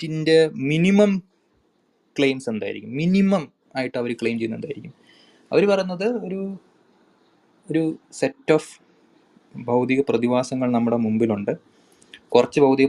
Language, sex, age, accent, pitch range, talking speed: Malayalam, male, 20-39, native, 115-145 Hz, 100 wpm